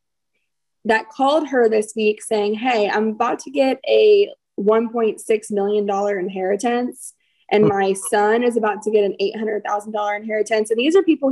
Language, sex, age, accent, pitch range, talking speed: English, female, 20-39, American, 205-245 Hz, 155 wpm